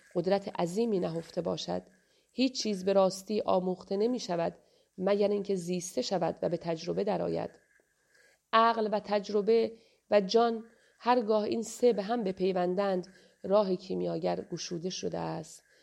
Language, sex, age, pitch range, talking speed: Persian, female, 40-59, 185-225 Hz, 135 wpm